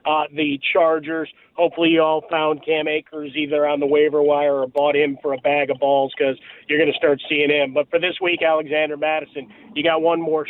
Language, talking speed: English, 225 wpm